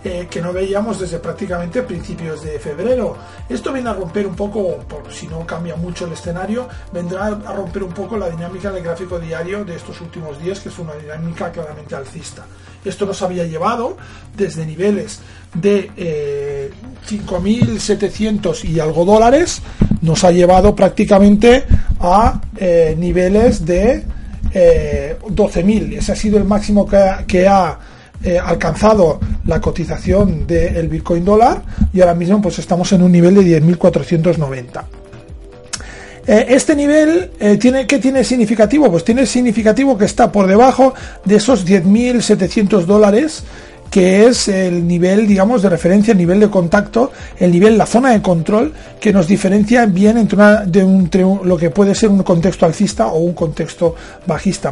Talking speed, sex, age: 155 wpm, male, 40-59